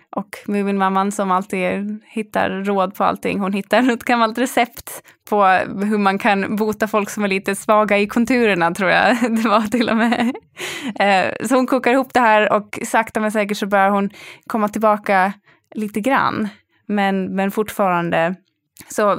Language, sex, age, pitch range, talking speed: English, female, 20-39, 190-220 Hz, 170 wpm